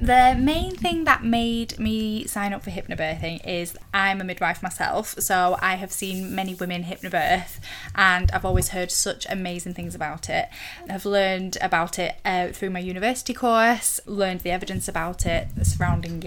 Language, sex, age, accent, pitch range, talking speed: English, female, 10-29, British, 175-205 Hz, 170 wpm